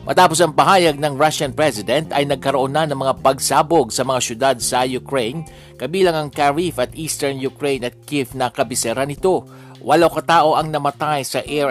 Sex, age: male, 50-69